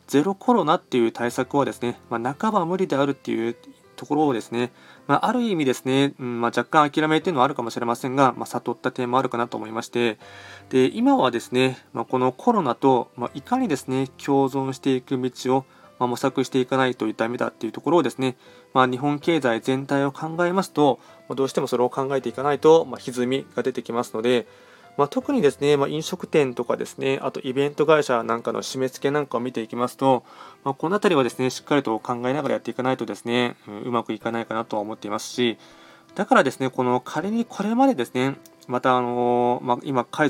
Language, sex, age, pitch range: Japanese, male, 20-39, 120-140 Hz